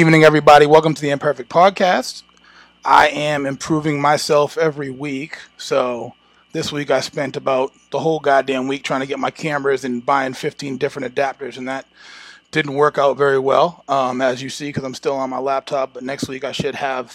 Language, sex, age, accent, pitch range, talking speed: English, male, 30-49, American, 135-165 Hz, 195 wpm